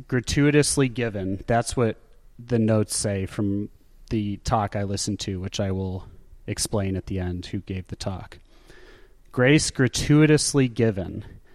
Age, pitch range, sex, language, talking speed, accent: 30-49, 100-125 Hz, male, English, 140 wpm, American